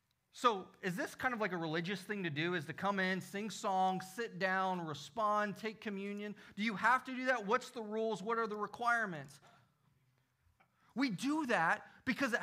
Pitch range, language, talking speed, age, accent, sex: 160-240 Hz, English, 195 wpm, 30-49, American, male